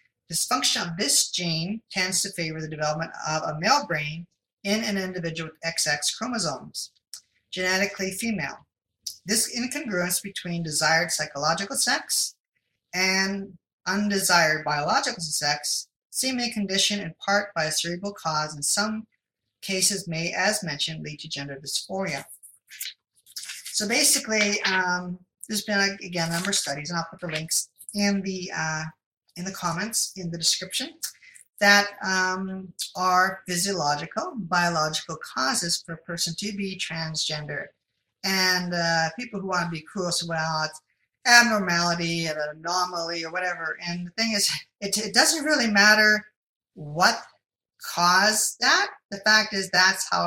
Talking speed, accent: 145 wpm, American